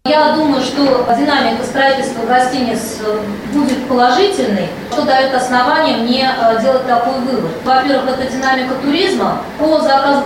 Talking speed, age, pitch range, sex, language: 125 wpm, 20-39, 235-285 Hz, female, Russian